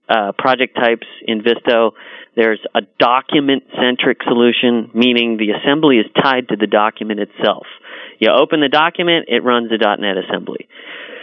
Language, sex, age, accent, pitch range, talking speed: English, male, 30-49, American, 105-130 Hz, 150 wpm